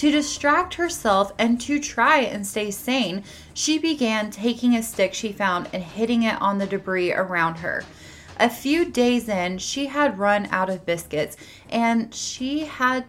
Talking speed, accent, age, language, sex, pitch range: 170 wpm, American, 20-39, English, female, 200-275 Hz